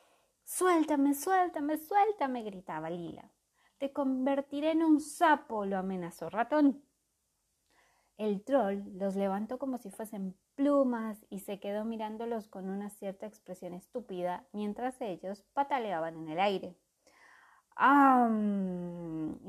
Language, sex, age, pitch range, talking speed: Spanish, female, 20-39, 180-270 Hz, 115 wpm